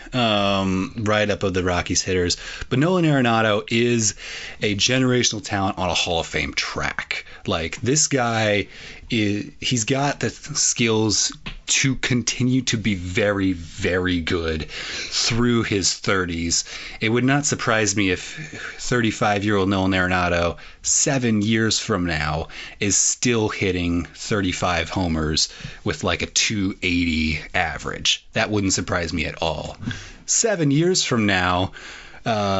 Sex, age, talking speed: male, 30-49, 135 wpm